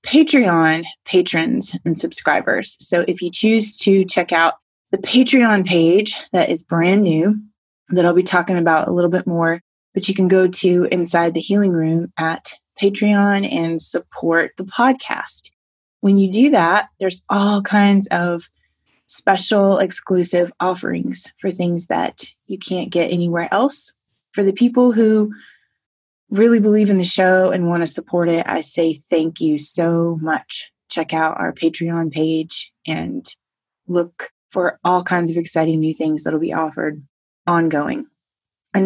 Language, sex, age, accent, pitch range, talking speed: English, female, 20-39, American, 165-205 Hz, 155 wpm